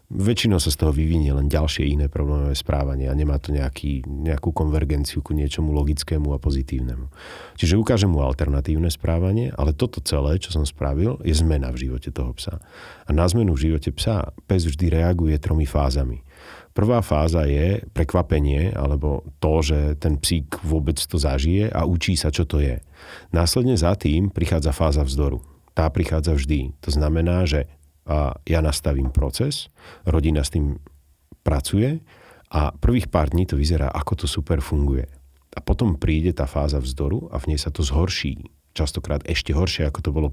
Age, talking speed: 40-59, 170 wpm